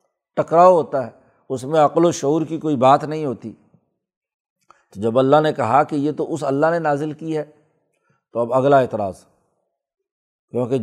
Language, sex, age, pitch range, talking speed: Urdu, male, 60-79, 145-185 Hz, 175 wpm